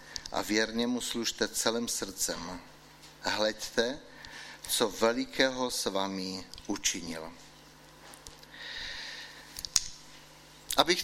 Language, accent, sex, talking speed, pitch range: Czech, native, male, 70 wpm, 105-135 Hz